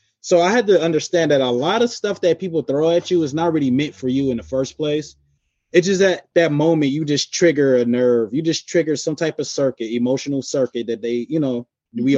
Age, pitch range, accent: 20-39, 115-145 Hz, American